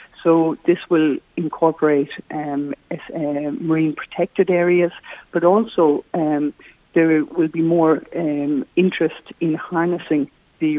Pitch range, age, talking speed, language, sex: 155-175 Hz, 50-69, 110 wpm, English, female